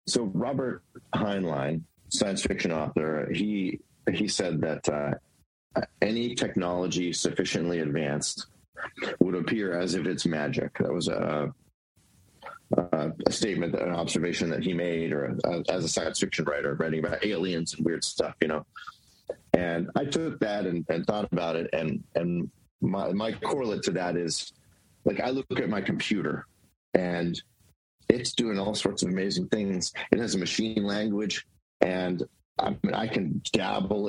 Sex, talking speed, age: male, 155 wpm, 30-49